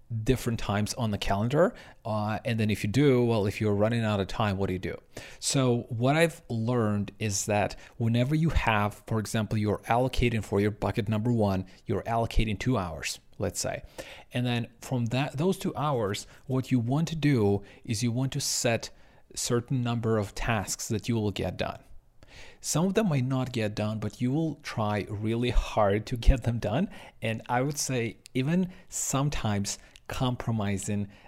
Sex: male